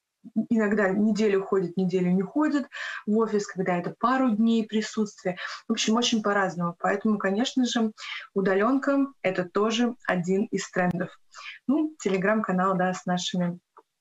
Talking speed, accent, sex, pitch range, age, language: 135 wpm, native, female, 190-225 Hz, 20-39, Russian